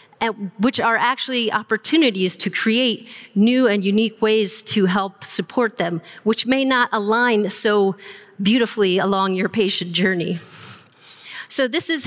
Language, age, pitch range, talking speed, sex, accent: English, 40-59, 195-230 Hz, 140 wpm, female, American